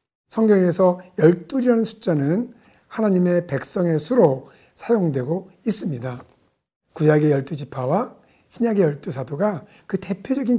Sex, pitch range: male, 145-210 Hz